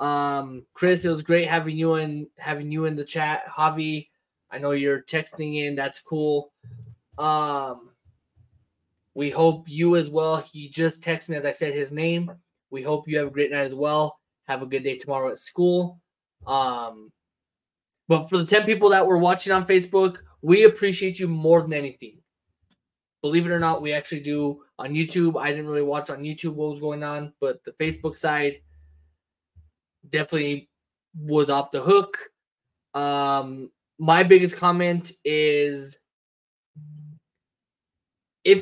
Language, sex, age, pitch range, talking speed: English, male, 20-39, 135-165 Hz, 160 wpm